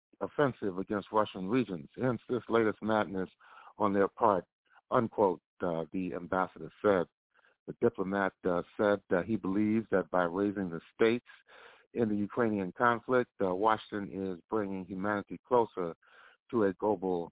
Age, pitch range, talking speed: 60-79, 90-110 Hz, 140 wpm